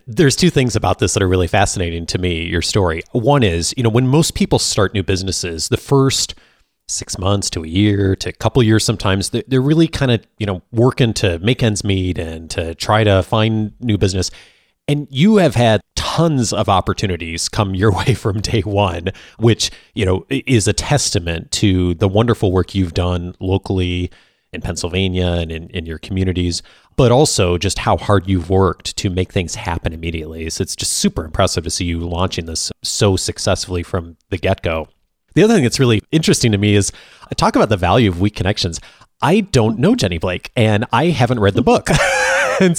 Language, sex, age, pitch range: English, male, 30-49, 90-120 Hz